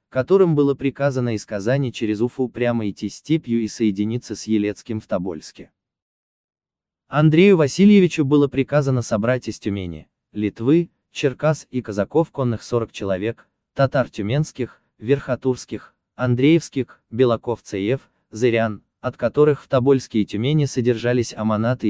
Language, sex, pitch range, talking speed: Russian, male, 105-140 Hz, 120 wpm